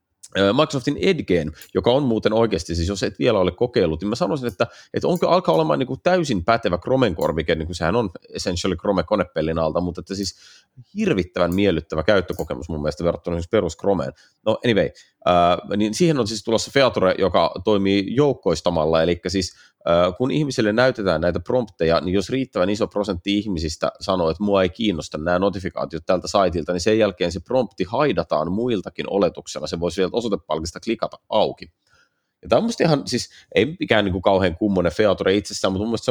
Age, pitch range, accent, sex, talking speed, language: 30-49, 85-110 Hz, native, male, 175 wpm, Finnish